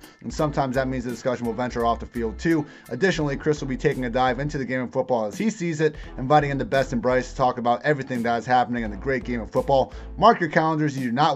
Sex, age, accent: male, 30-49, American